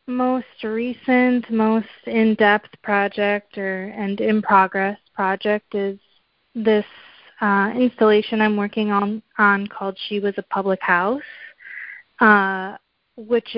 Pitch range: 195-235 Hz